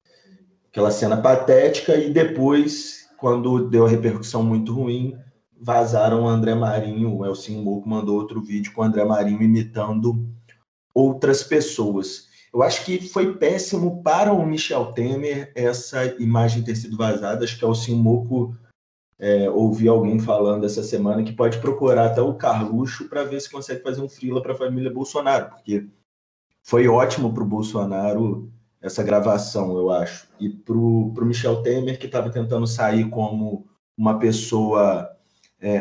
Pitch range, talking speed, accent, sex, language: 110-130 Hz, 155 wpm, Brazilian, male, Portuguese